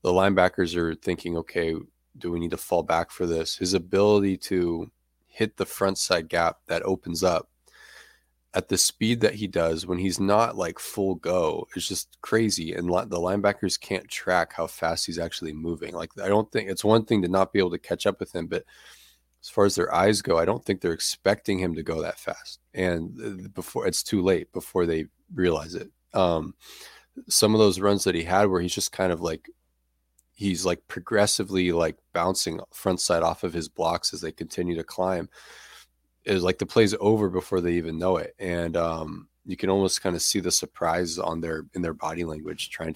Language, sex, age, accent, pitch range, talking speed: English, male, 30-49, American, 80-95 Hz, 210 wpm